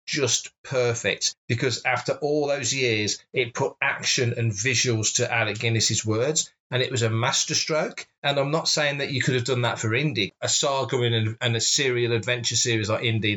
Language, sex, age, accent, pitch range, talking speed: English, male, 30-49, British, 115-145 Hz, 195 wpm